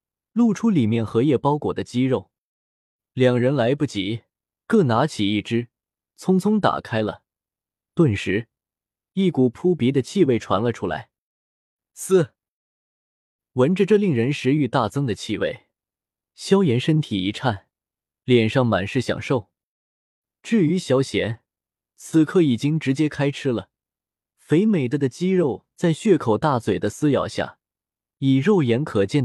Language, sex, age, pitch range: Chinese, male, 20-39, 105-150 Hz